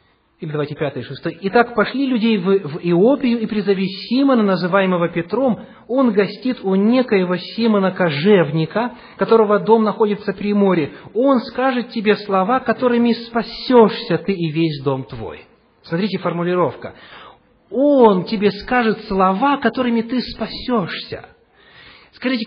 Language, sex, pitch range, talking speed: English, male, 180-240 Hz, 115 wpm